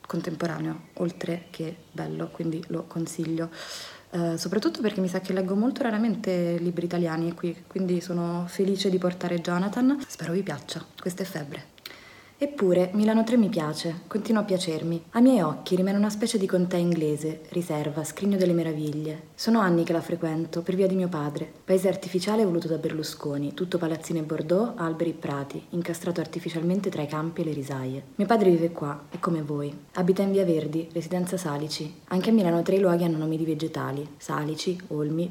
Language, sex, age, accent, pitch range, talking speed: Italian, female, 30-49, native, 155-185 Hz, 180 wpm